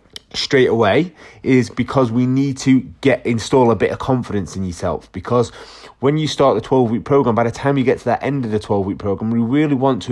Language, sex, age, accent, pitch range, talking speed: English, male, 30-49, British, 110-135 Hz, 235 wpm